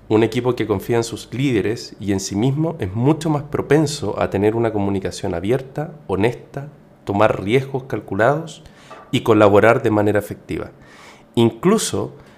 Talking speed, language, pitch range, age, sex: 145 wpm, Spanish, 100-150 Hz, 40-59, male